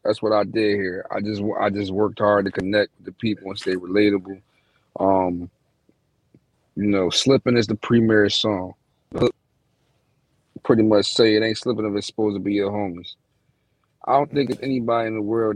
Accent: American